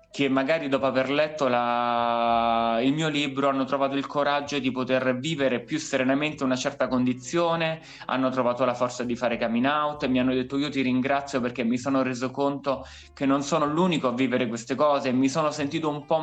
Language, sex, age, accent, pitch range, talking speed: Italian, male, 20-39, native, 125-155 Hz, 190 wpm